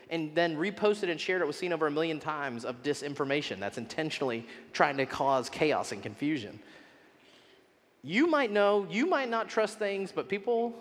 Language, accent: English, American